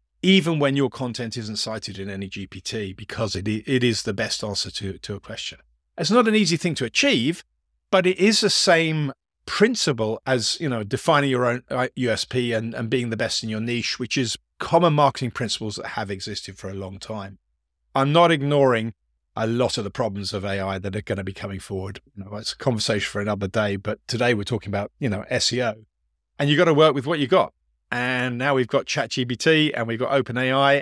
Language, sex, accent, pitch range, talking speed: English, male, British, 105-140 Hz, 215 wpm